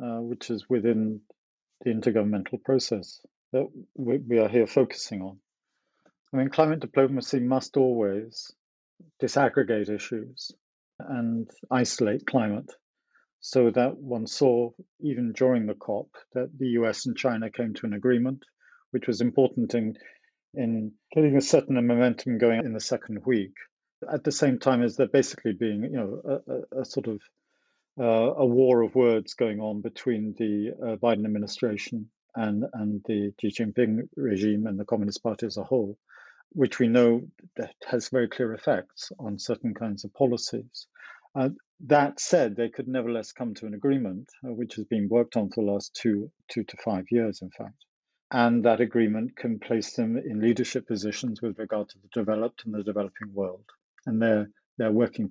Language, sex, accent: English, male, British